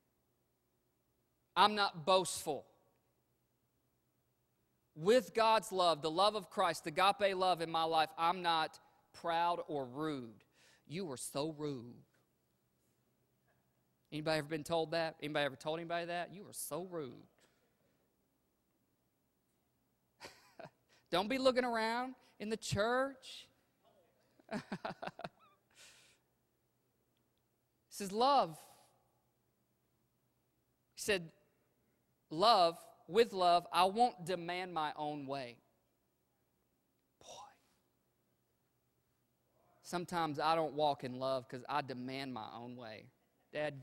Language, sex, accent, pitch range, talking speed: English, male, American, 130-185 Hz, 100 wpm